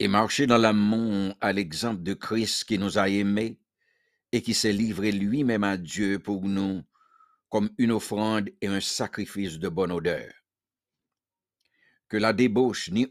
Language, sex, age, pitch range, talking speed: English, male, 60-79, 100-130 Hz, 155 wpm